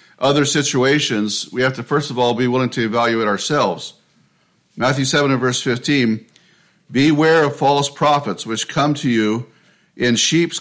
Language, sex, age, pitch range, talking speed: English, male, 50-69, 120-150 Hz, 160 wpm